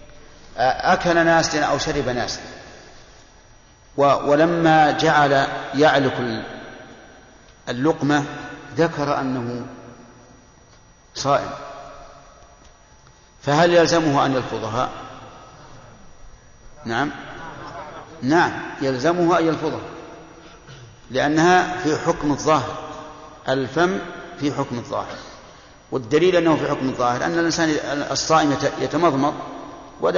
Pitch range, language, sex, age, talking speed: 135-160 Hz, Arabic, male, 60-79, 80 wpm